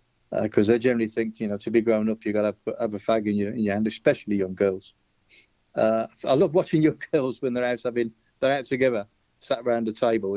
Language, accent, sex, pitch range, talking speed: English, British, male, 110-135 Hz, 250 wpm